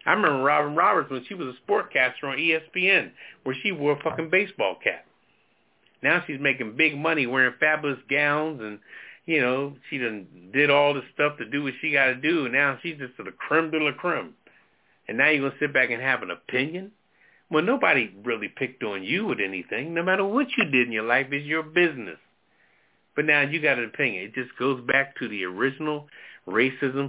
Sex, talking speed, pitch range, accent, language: male, 215 wpm, 130-175 Hz, American, English